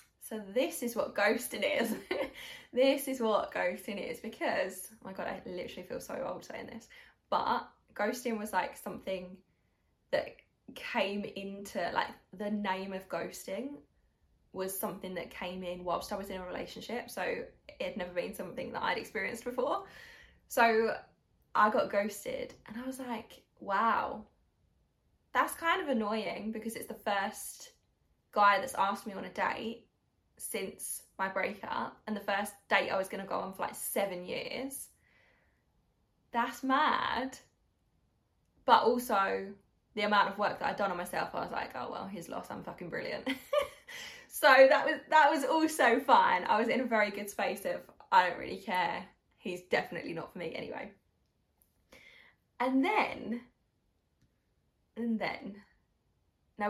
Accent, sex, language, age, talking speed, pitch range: British, female, English, 10-29, 160 wpm, 200-265 Hz